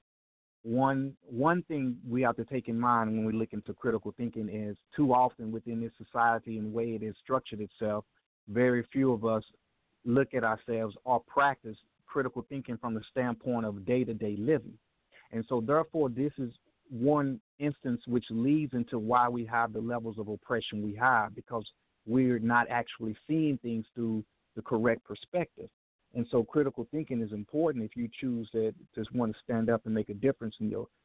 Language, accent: English, American